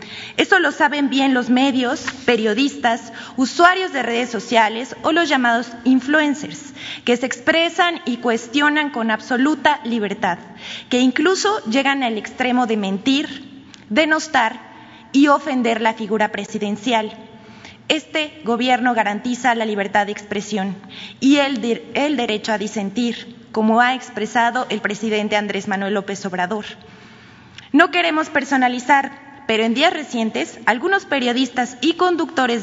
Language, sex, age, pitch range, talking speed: Spanish, female, 20-39, 220-275 Hz, 125 wpm